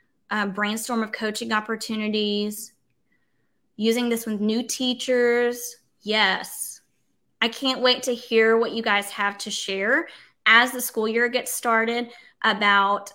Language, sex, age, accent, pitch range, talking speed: English, female, 20-39, American, 215-265 Hz, 130 wpm